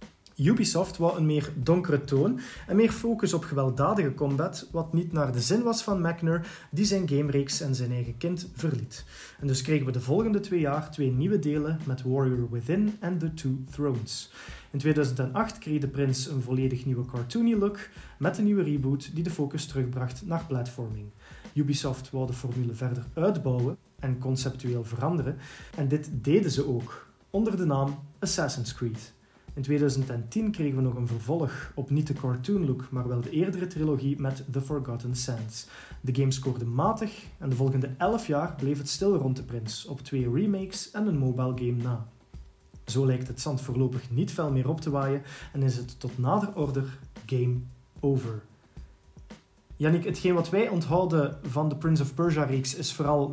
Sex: male